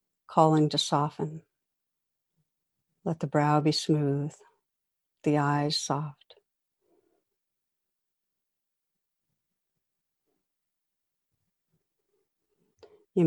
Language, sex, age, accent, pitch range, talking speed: English, female, 60-79, American, 150-200 Hz, 55 wpm